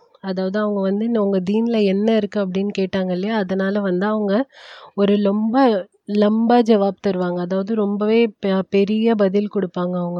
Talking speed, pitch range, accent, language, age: 135 wpm, 190-210 Hz, native, Tamil, 30-49